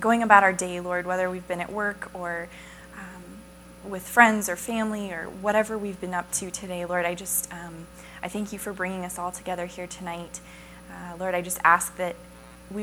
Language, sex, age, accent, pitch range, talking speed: English, female, 20-39, American, 170-205 Hz, 205 wpm